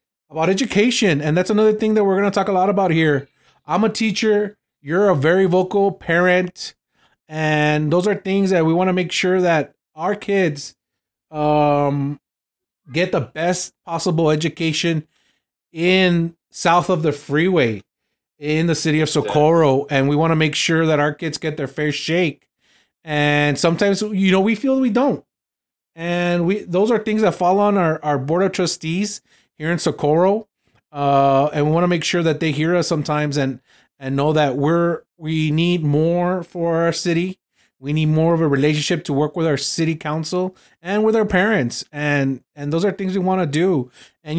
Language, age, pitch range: English, 30-49, 150-195 Hz